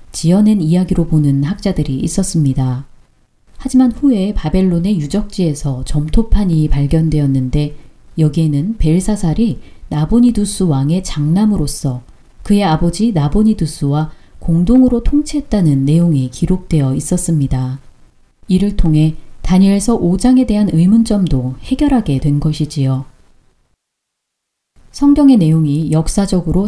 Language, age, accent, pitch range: Korean, 40-59, native, 150-205 Hz